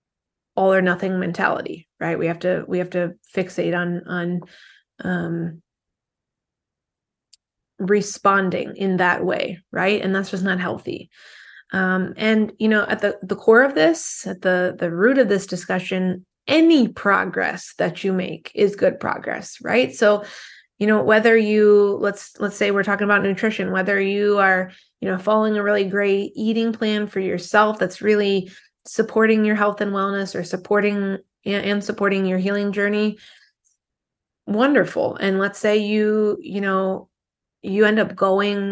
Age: 20-39